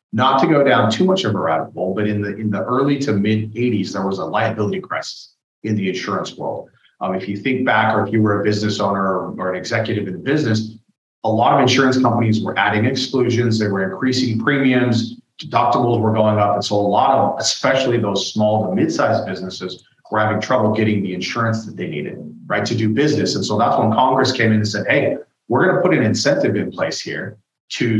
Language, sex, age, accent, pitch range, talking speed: English, male, 30-49, American, 100-120 Hz, 230 wpm